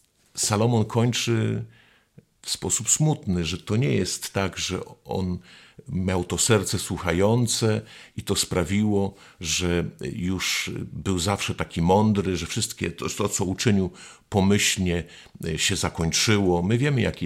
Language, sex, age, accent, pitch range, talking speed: Polish, male, 50-69, native, 85-105 Hz, 125 wpm